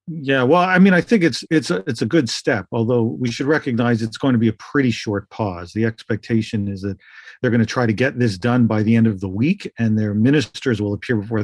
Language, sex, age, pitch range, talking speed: English, male, 40-59, 110-135 Hz, 255 wpm